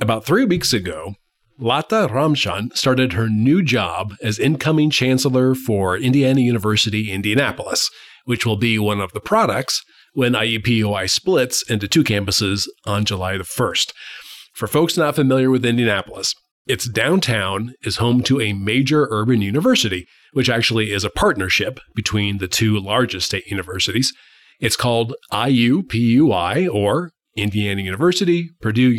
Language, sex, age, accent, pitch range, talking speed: English, male, 30-49, American, 105-140 Hz, 140 wpm